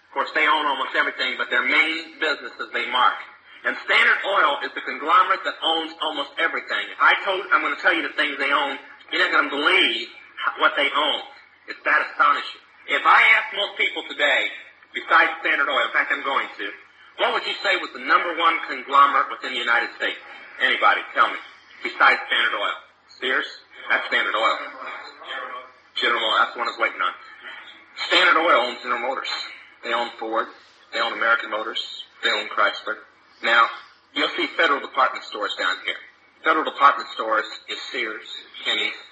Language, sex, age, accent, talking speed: English, male, 40-59, American, 185 wpm